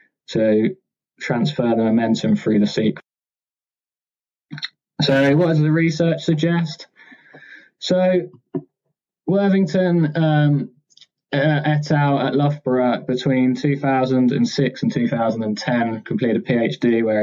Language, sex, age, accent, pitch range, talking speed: English, male, 20-39, British, 115-150 Hz, 100 wpm